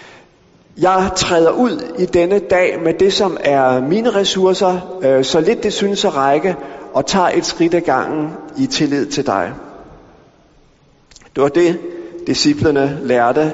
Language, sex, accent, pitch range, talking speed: Danish, male, native, 135-185 Hz, 145 wpm